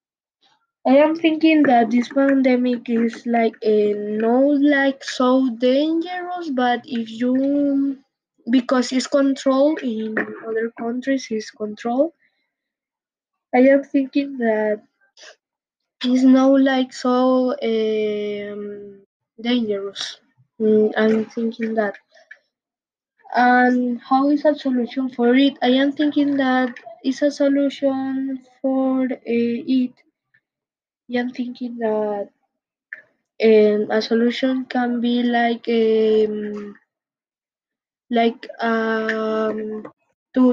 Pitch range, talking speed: 225-270 Hz, 100 wpm